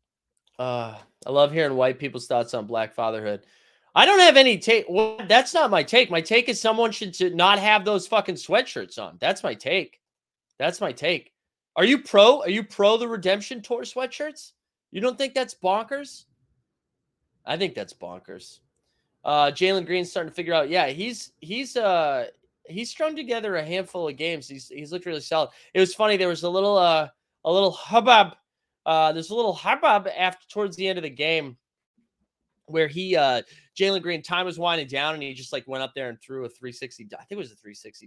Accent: American